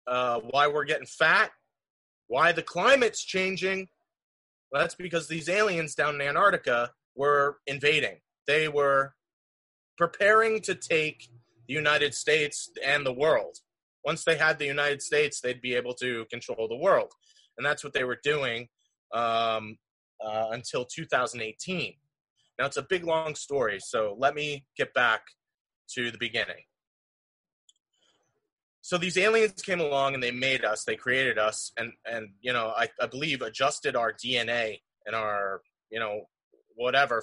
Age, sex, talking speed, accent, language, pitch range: 30-49, male, 150 wpm, American, English, 120-165 Hz